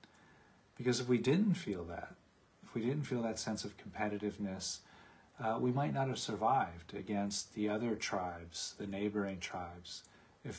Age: 40-59